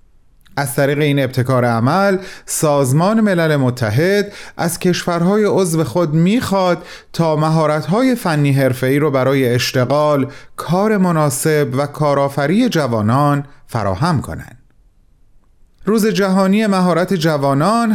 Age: 30-49